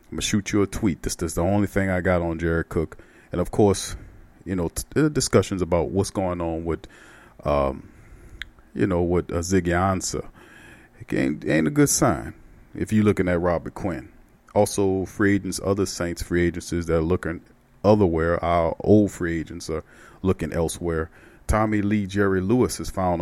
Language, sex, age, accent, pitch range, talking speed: English, male, 40-59, American, 85-100 Hz, 190 wpm